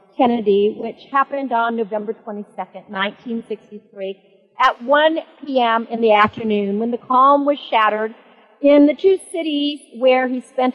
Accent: American